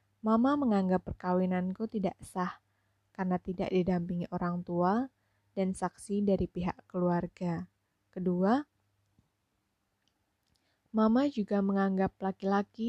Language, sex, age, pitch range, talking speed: Indonesian, female, 20-39, 170-195 Hz, 95 wpm